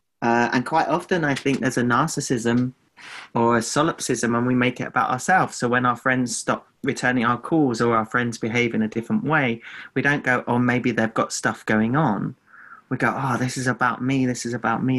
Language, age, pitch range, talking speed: English, 30-49, 110-125 Hz, 220 wpm